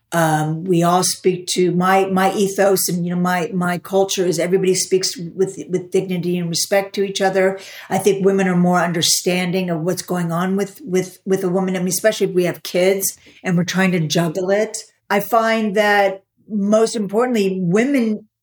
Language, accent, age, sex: English, American, 50-69, female